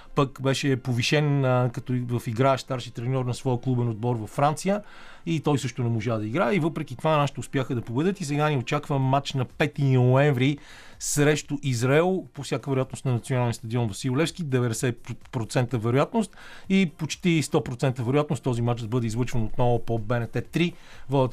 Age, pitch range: 40-59, 120-150 Hz